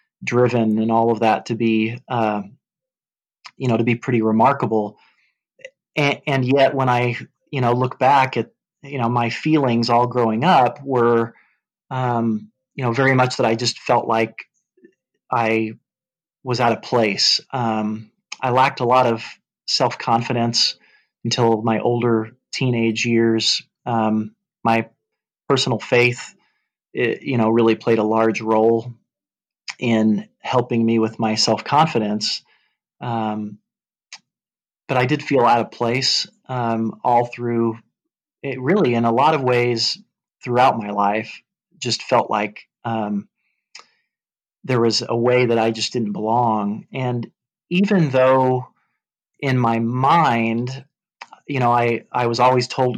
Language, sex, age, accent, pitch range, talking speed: English, male, 30-49, American, 115-125 Hz, 140 wpm